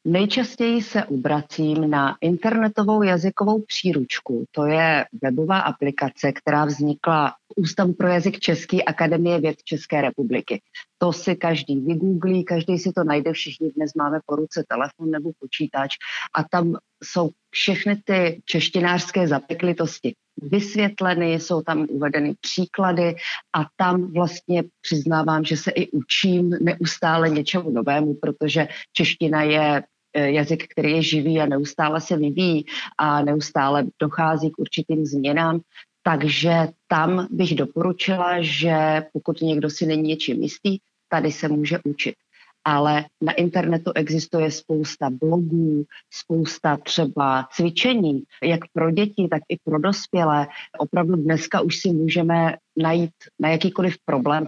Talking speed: 130 wpm